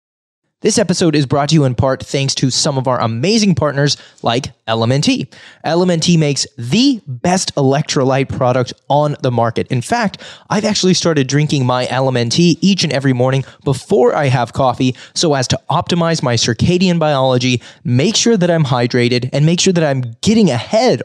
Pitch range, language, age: 130-180 Hz, English, 20-39